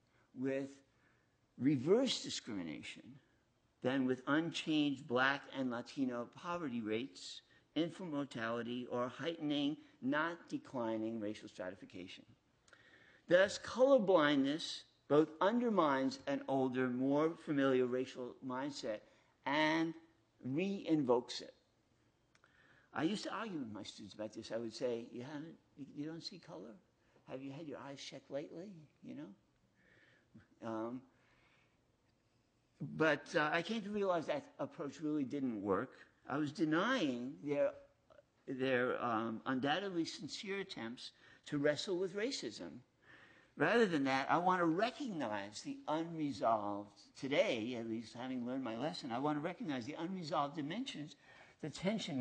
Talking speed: 125 wpm